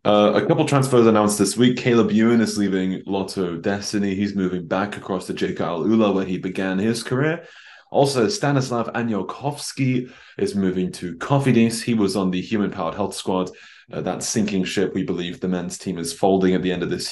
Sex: male